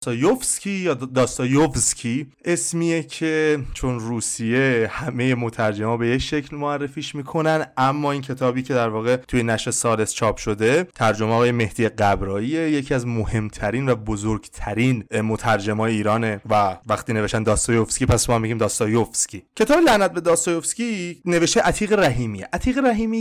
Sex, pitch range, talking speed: male, 115-160 Hz, 135 wpm